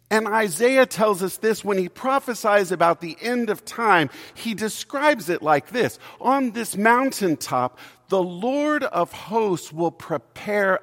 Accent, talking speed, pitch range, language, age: American, 150 wpm, 145-230 Hz, English, 50-69